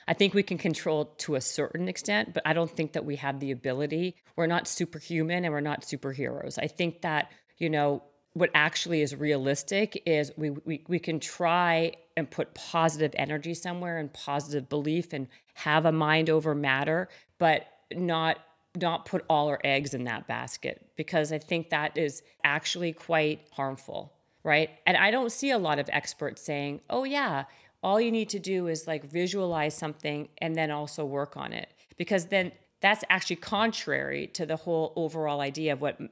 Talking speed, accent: 185 wpm, American